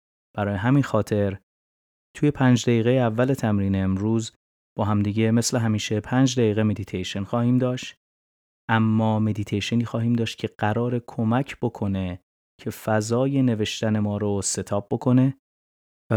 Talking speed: 125 wpm